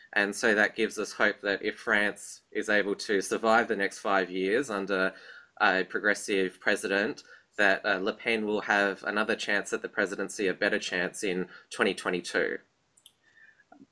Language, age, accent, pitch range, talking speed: English, 20-39, Australian, 100-115 Hz, 160 wpm